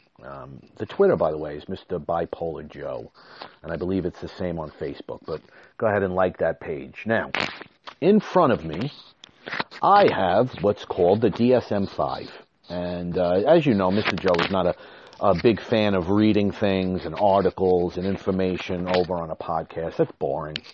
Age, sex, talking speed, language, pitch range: 40-59, male, 180 wpm, English, 90-110 Hz